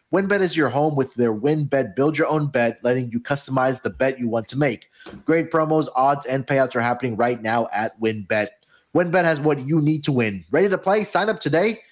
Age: 30-49